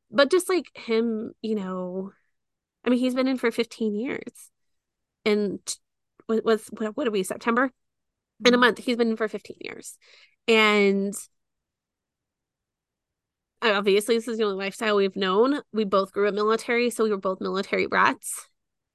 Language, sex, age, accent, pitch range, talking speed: English, female, 20-39, American, 200-230 Hz, 160 wpm